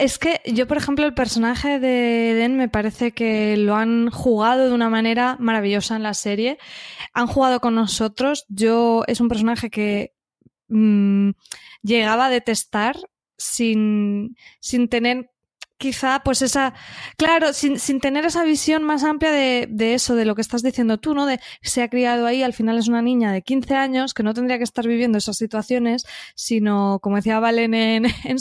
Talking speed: 180 wpm